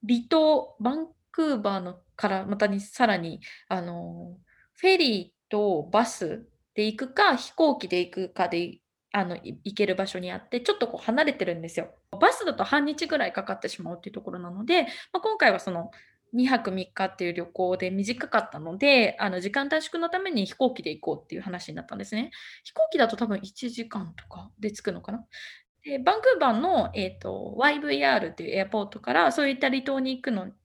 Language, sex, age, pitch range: Japanese, female, 20-39, 195-305 Hz